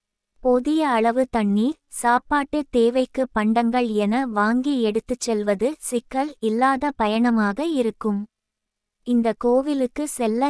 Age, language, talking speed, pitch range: 20-39, Tamil, 95 wpm, 225-270 Hz